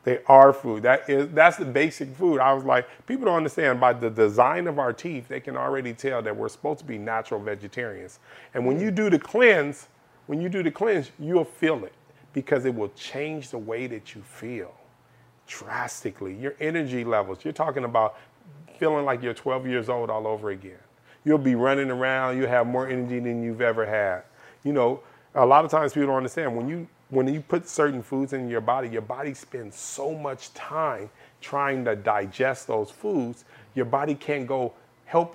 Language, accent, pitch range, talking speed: English, American, 120-145 Hz, 200 wpm